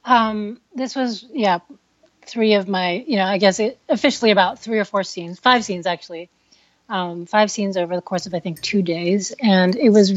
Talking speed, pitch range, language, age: 205 wpm, 180-220 Hz, English, 30-49